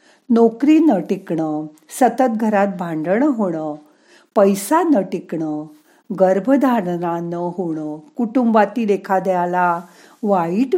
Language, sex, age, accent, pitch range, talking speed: Marathi, female, 50-69, native, 180-265 Hz, 90 wpm